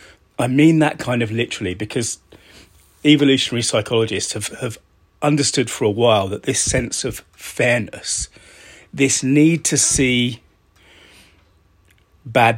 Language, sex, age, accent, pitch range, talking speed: English, male, 30-49, British, 100-130 Hz, 120 wpm